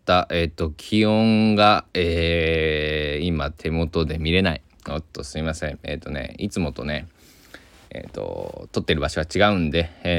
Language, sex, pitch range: Japanese, male, 80-100 Hz